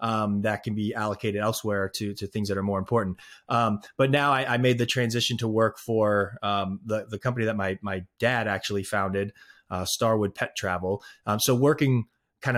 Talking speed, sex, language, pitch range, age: 200 wpm, male, English, 105-120 Hz, 20-39